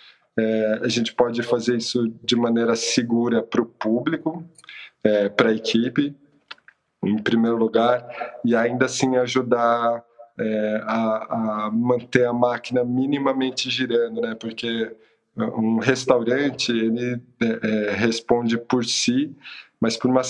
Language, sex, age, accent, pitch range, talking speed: Portuguese, male, 20-39, Brazilian, 110-125 Hz, 110 wpm